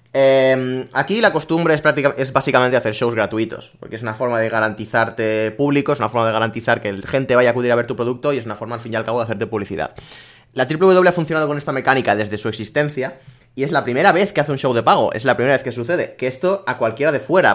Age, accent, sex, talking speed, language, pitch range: 20-39, Spanish, male, 265 wpm, Spanish, 115-140 Hz